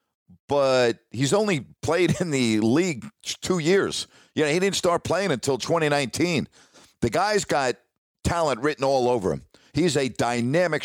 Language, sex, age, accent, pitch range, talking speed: English, male, 50-69, American, 120-155 Hz, 155 wpm